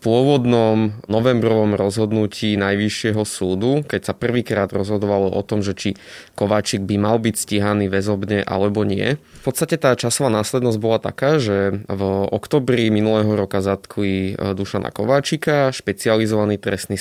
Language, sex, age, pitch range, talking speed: Slovak, male, 20-39, 100-120 Hz, 140 wpm